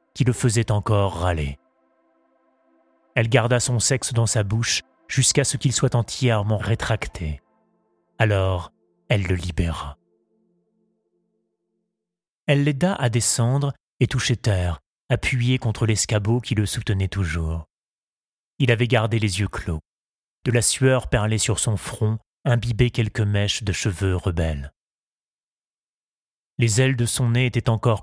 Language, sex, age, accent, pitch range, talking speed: French, male, 30-49, French, 95-125 Hz, 135 wpm